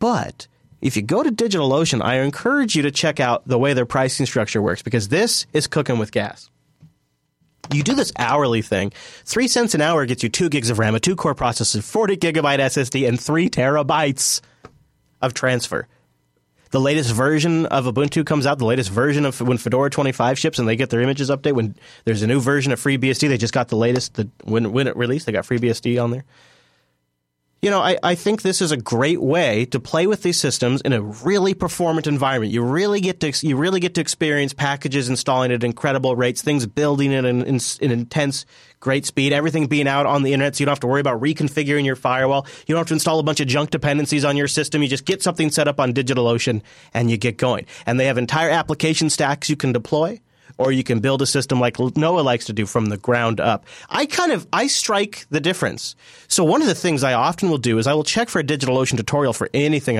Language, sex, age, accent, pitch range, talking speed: English, male, 30-49, American, 120-150 Hz, 225 wpm